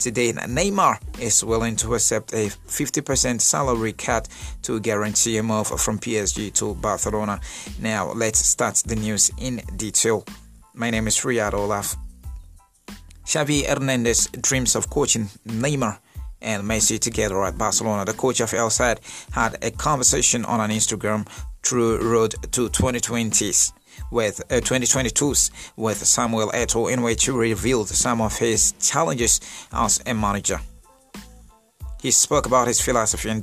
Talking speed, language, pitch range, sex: 140 wpm, English, 105-125 Hz, male